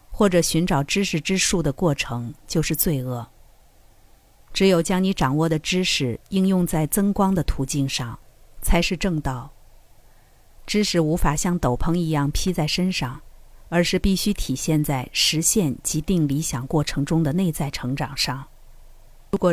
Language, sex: Chinese, female